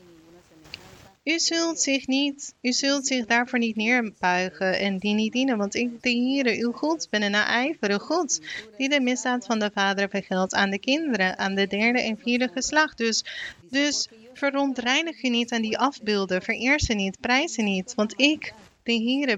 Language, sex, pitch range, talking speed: Dutch, female, 205-265 Hz, 180 wpm